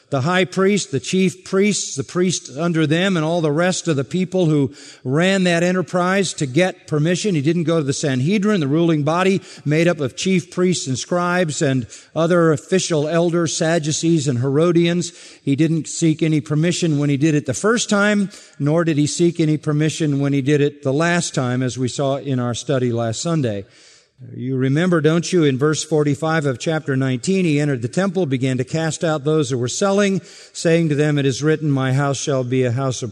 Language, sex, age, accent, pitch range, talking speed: English, male, 50-69, American, 130-170 Hz, 210 wpm